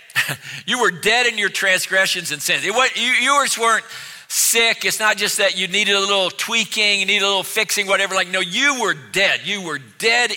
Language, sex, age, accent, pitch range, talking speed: English, male, 50-69, American, 170-220 Hz, 215 wpm